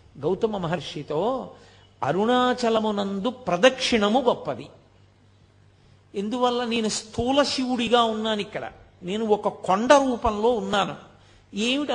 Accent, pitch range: native, 170-245 Hz